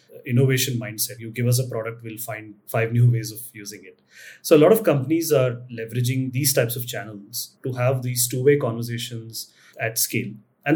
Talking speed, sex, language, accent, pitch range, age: 190 wpm, male, English, Indian, 110-130 Hz, 30-49